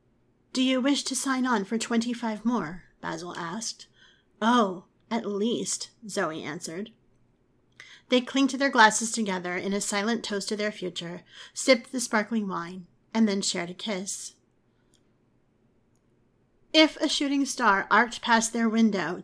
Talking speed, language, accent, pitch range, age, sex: 140 wpm, English, American, 175-230 Hz, 30-49, female